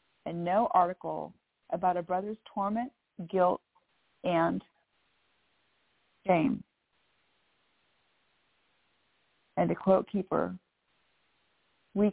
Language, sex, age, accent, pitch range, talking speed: English, female, 40-59, American, 165-195 Hz, 75 wpm